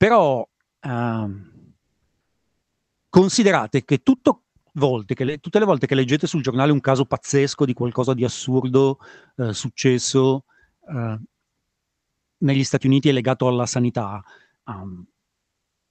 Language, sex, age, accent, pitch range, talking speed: Italian, male, 40-59, native, 125-165 Hz, 120 wpm